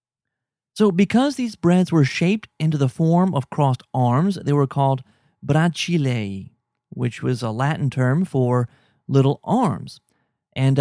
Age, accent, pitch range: 30-49, American, 135-185 Hz